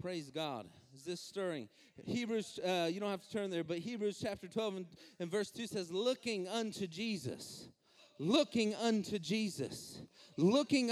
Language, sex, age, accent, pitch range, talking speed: English, male, 30-49, American, 225-320 Hz, 160 wpm